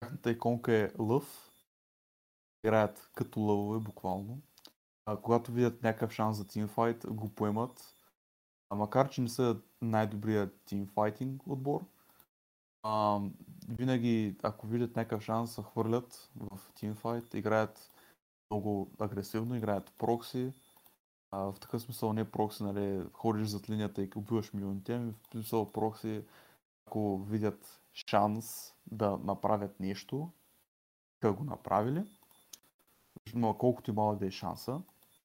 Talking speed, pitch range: 120 wpm, 100-115 Hz